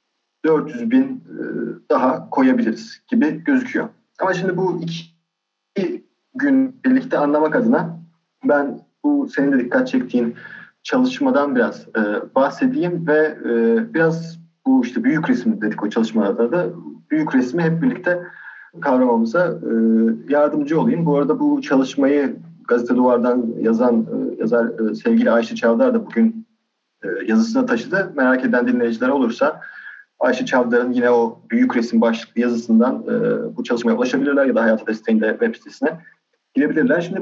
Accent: native